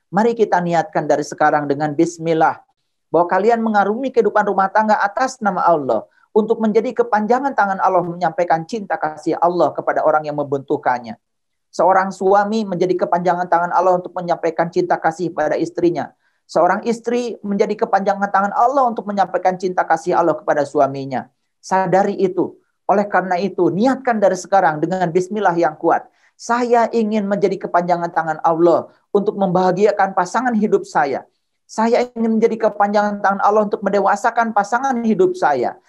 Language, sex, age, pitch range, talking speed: Indonesian, male, 40-59, 165-215 Hz, 150 wpm